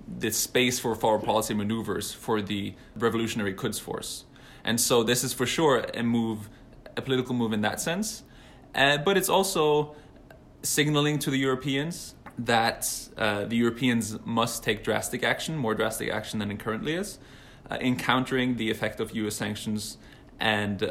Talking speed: 160 wpm